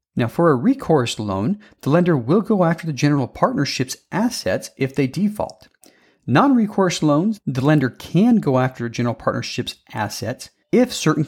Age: 40-59